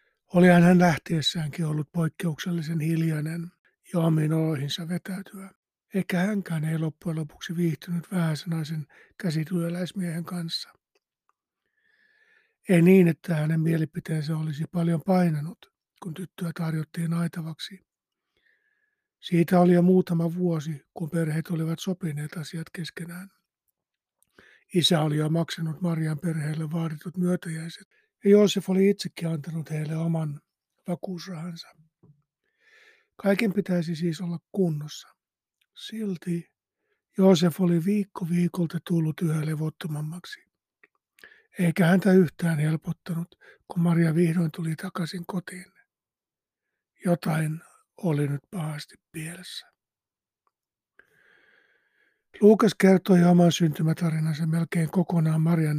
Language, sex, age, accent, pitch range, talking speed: Finnish, male, 60-79, native, 160-190 Hz, 100 wpm